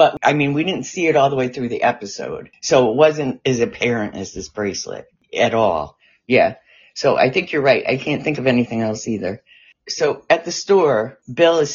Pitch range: 110-135 Hz